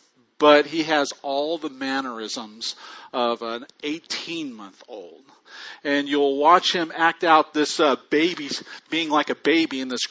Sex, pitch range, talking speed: male, 140-190 Hz, 140 wpm